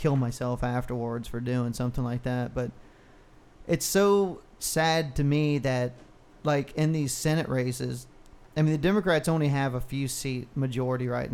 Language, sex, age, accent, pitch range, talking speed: English, male, 30-49, American, 125-145 Hz, 165 wpm